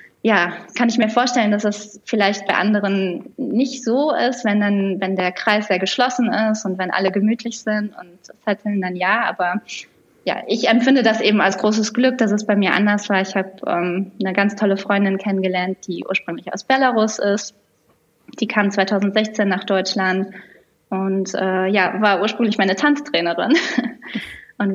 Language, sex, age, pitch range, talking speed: German, female, 20-39, 185-215 Hz, 175 wpm